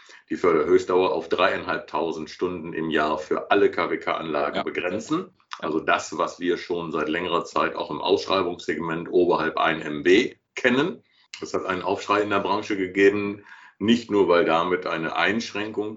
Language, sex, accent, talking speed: German, male, German, 150 wpm